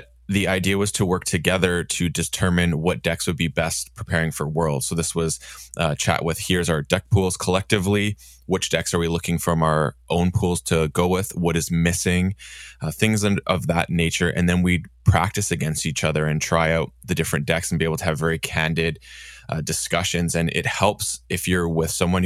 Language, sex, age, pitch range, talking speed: English, male, 20-39, 80-90 Hz, 205 wpm